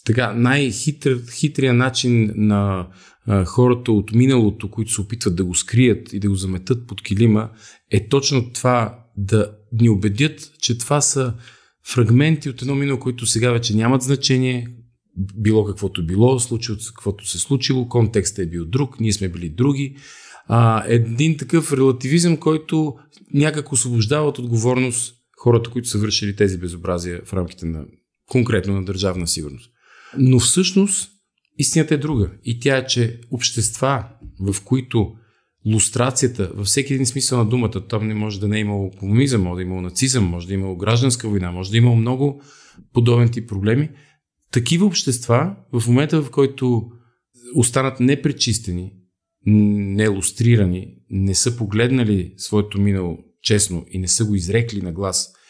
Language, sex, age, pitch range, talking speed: Bulgarian, male, 40-59, 100-130 Hz, 155 wpm